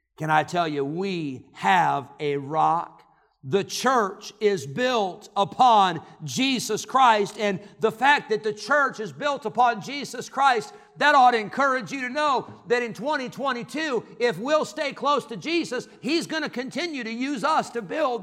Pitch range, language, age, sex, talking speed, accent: 180-275 Hz, English, 50-69, male, 165 wpm, American